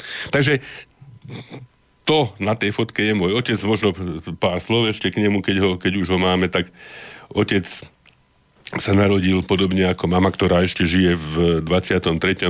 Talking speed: 155 wpm